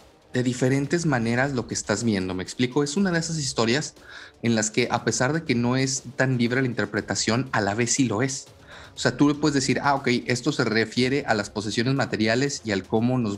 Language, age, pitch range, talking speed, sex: Spanish, 30-49, 110-140 Hz, 230 wpm, male